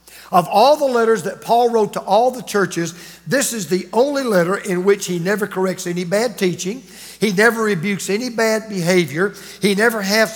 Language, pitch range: English, 180-230 Hz